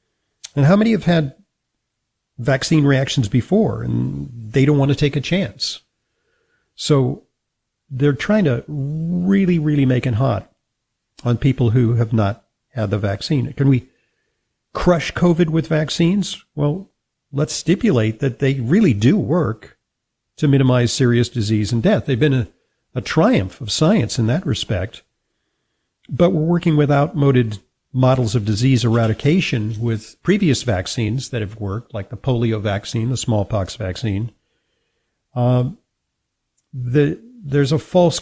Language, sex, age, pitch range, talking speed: English, male, 50-69, 115-155 Hz, 140 wpm